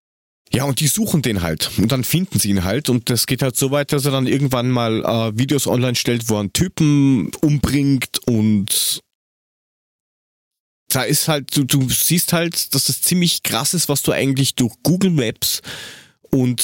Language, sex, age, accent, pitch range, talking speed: German, male, 30-49, German, 115-150 Hz, 190 wpm